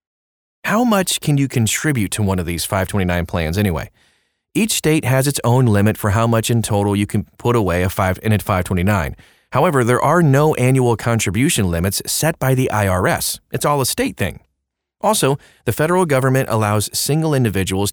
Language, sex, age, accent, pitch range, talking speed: English, male, 30-49, American, 95-130 Hz, 175 wpm